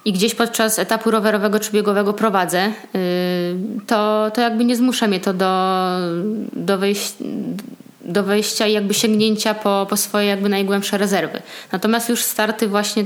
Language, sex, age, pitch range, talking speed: Polish, female, 20-39, 200-220 Hz, 145 wpm